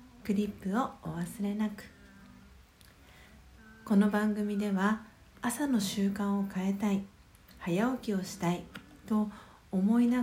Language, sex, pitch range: Japanese, female, 185-225 Hz